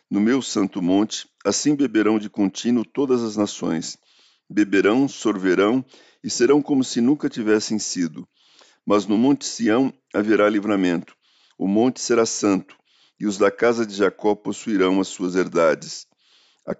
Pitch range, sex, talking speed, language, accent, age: 100-125 Hz, male, 145 wpm, Portuguese, Brazilian, 50-69